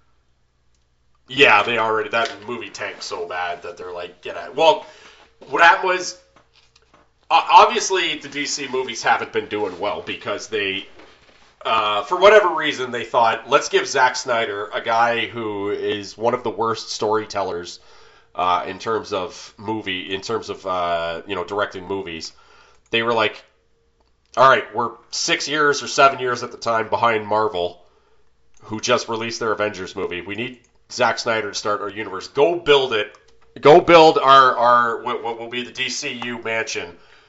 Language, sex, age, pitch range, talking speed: English, male, 30-49, 100-140 Hz, 165 wpm